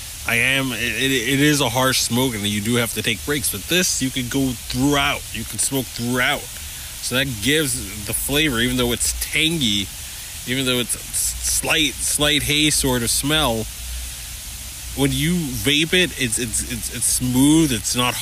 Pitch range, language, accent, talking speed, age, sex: 105-135 Hz, English, American, 180 wpm, 20-39, male